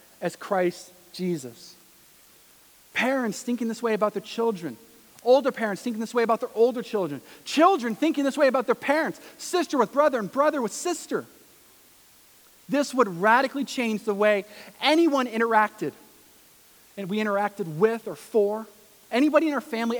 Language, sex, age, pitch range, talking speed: English, male, 40-59, 170-225 Hz, 155 wpm